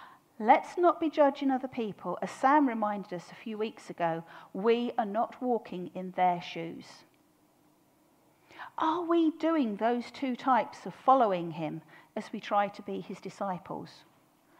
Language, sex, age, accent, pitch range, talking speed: English, female, 40-59, British, 180-270 Hz, 150 wpm